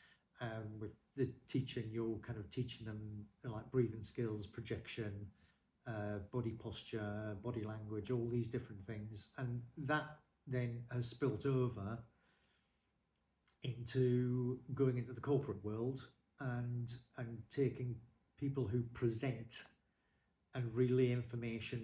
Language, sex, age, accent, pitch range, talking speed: English, male, 40-59, British, 105-125 Hz, 120 wpm